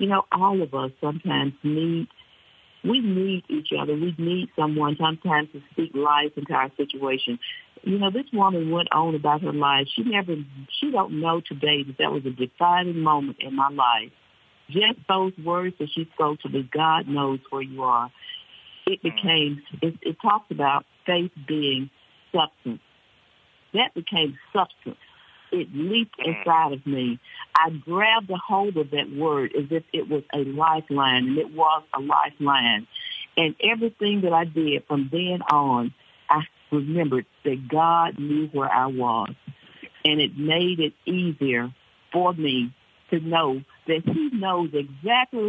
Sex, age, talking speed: female, 50-69, 160 wpm